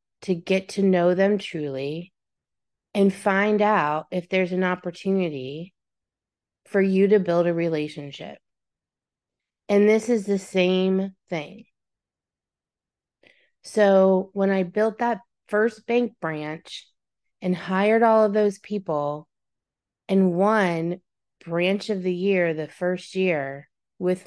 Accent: American